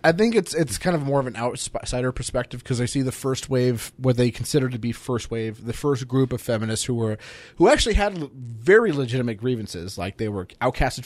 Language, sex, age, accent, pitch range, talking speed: English, male, 30-49, American, 115-135 Hz, 230 wpm